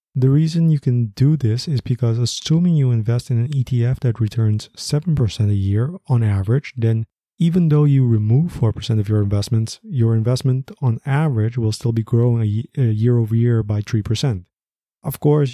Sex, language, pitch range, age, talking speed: male, English, 110-135 Hz, 20-39, 175 wpm